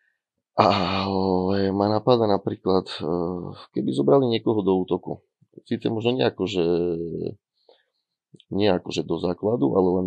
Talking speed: 105 wpm